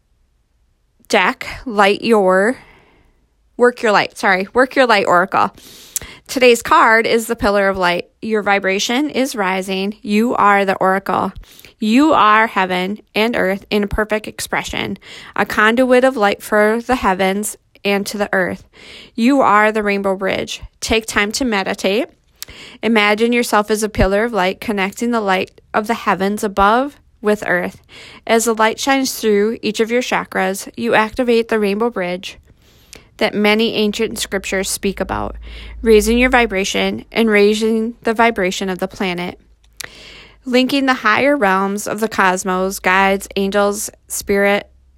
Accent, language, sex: American, English, female